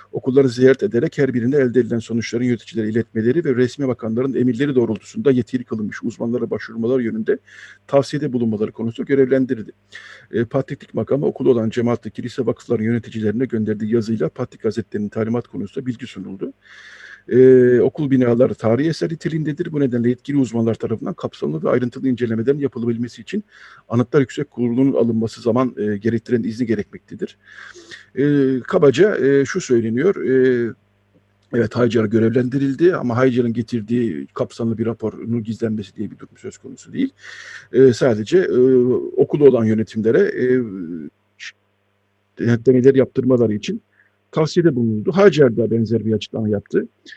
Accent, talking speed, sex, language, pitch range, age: native, 130 wpm, male, Turkish, 115-130 Hz, 50-69